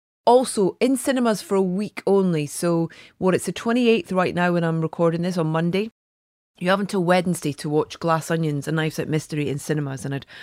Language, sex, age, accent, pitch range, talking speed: English, female, 30-49, British, 155-200 Hz, 205 wpm